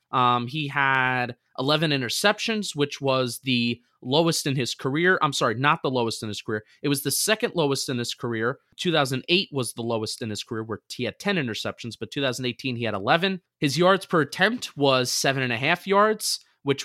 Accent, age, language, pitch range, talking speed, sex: American, 20-39, English, 125-170 Hz, 200 wpm, male